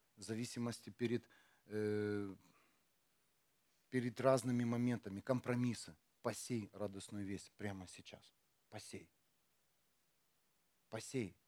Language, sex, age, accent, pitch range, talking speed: Russian, male, 40-59, native, 110-145 Hz, 80 wpm